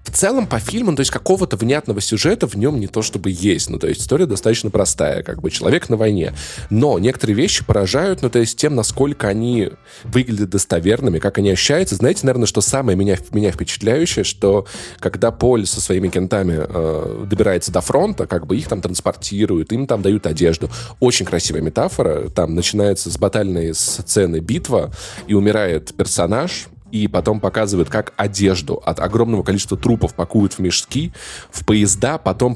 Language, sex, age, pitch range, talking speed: Russian, male, 20-39, 95-120 Hz, 175 wpm